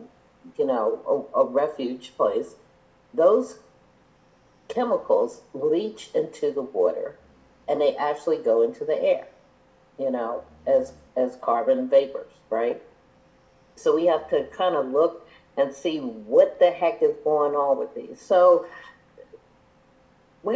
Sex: female